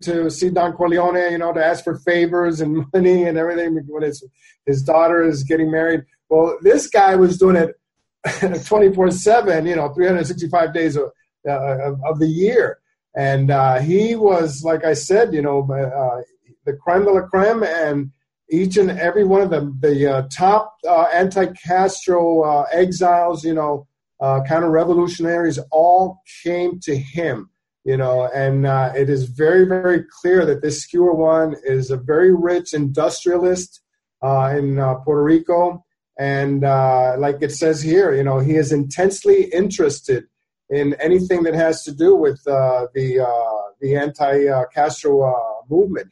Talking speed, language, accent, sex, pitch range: 160 wpm, English, American, male, 140-175 Hz